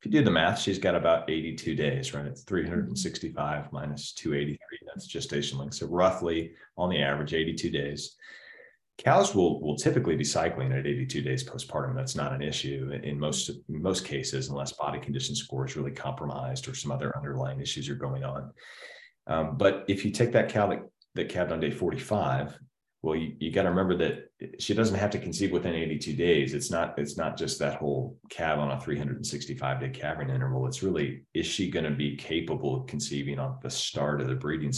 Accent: American